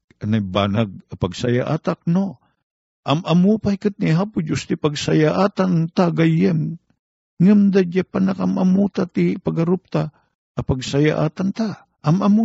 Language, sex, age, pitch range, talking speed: Filipino, male, 50-69, 100-160 Hz, 95 wpm